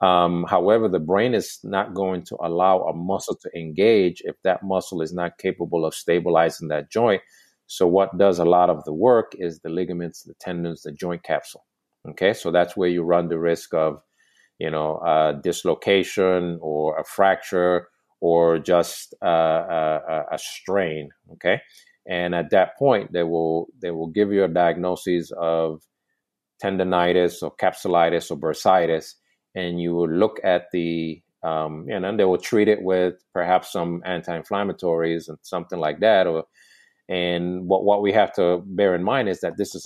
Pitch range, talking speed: 85-95 Hz, 175 wpm